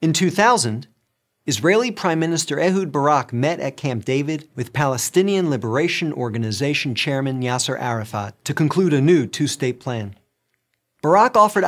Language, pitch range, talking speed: English, 125-175 Hz, 135 wpm